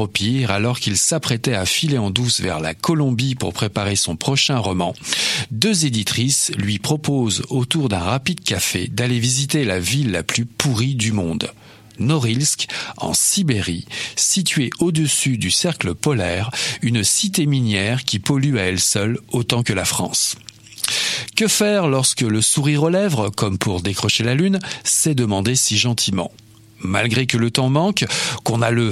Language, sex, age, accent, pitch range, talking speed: French, male, 50-69, French, 105-145 Hz, 160 wpm